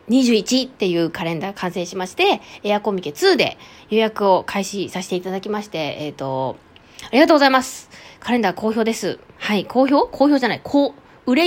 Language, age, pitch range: Japanese, 20-39, 180-245 Hz